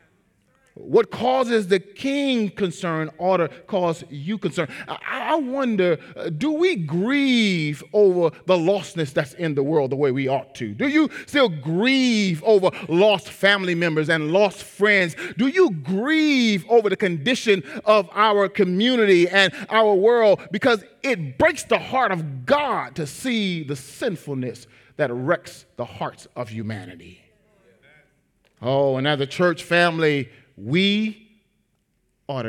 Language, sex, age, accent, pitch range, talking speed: English, male, 30-49, American, 145-205 Hz, 140 wpm